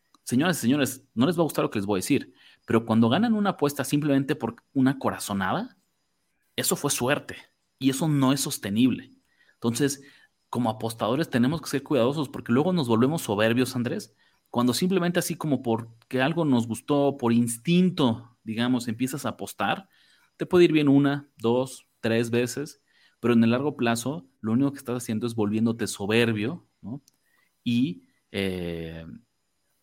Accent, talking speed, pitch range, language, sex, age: Mexican, 165 wpm, 110-140 Hz, Spanish, male, 30-49